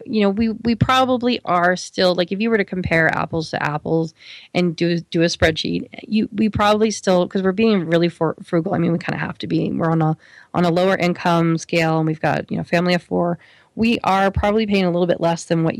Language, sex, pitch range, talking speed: English, female, 165-195 Hz, 245 wpm